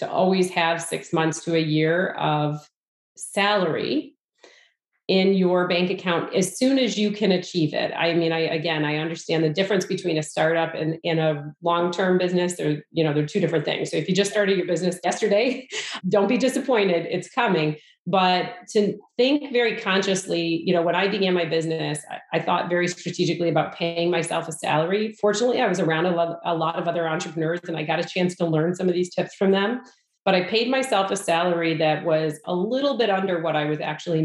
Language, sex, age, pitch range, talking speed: English, female, 30-49, 165-205 Hz, 205 wpm